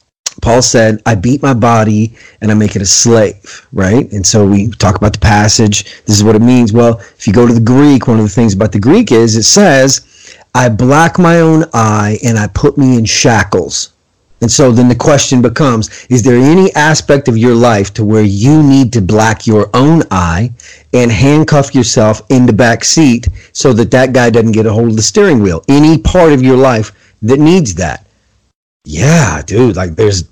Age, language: 40-59, English